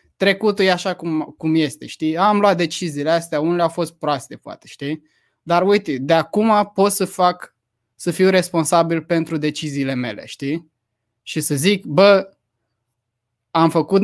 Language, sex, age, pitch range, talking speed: Romanian, male, 20-39, 125-165 Hz, 160 wpm